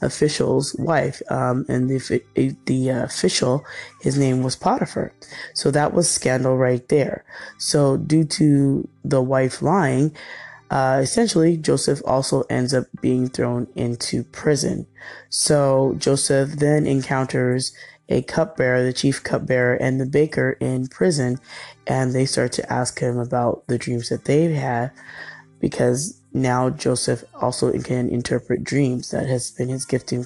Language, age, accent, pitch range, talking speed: English, 20-39, American, 125-145 Hz, 145 wpm